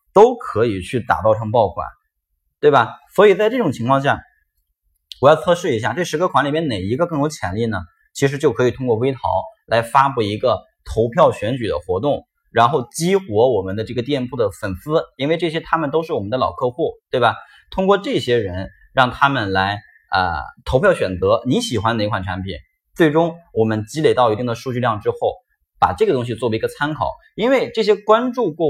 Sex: male